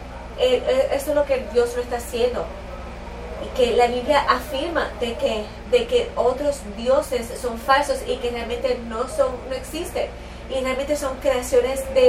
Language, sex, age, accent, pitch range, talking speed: English, female, 20-39, American, 235-275 Hz, 165 wpm